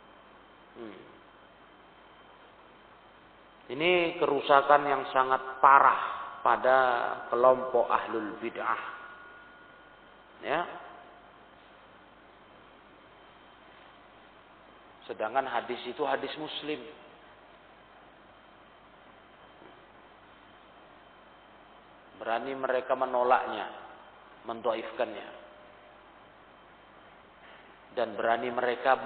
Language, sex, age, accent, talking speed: Indonesian, male, 40-59, native, 50 wpm